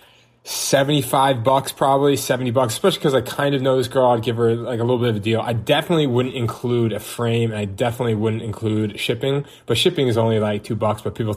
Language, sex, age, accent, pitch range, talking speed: English, male, 20-39, American, 115-140 Hz, 230 wpm